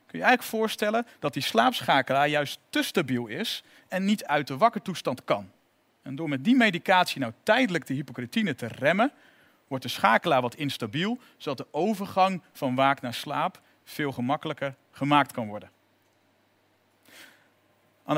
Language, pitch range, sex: Dutch, 130-200 Hz, male